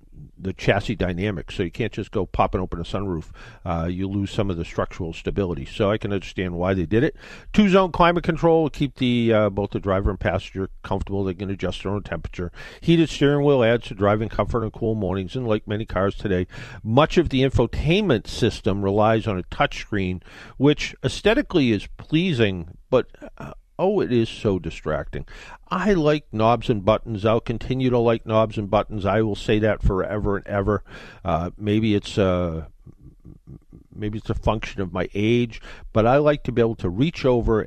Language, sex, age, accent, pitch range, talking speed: English, male, 50-69, American, 95-120 Hz, 195 wpm